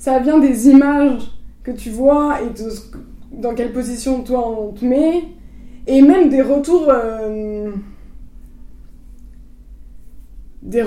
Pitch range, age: 230-285 Hz, 20-39